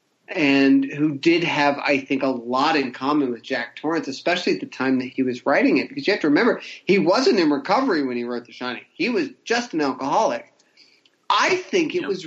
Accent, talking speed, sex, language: American, 220 wpm, male, English